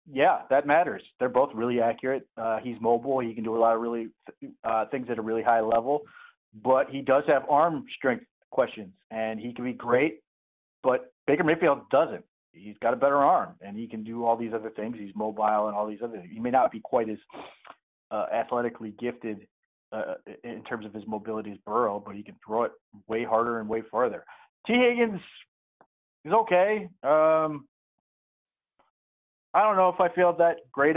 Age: 30-49